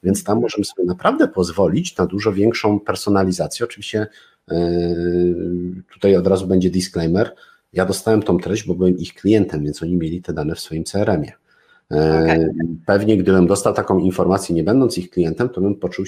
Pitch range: 90-105 Hz